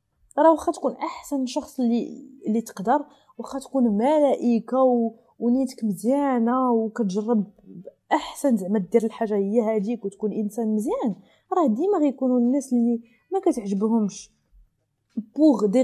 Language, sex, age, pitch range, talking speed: Arabic, female, 20-39, 210-275 Hz, 130 wpm